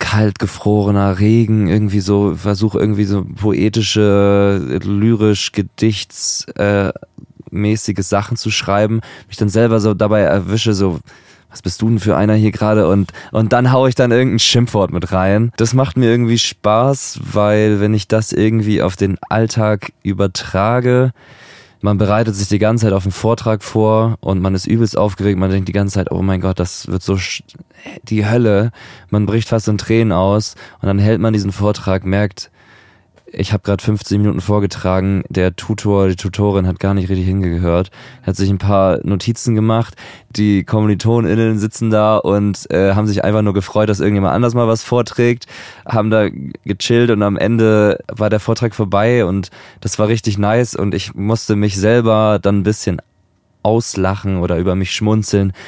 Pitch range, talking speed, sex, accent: 95-110 Hz, 170 wpm, male, German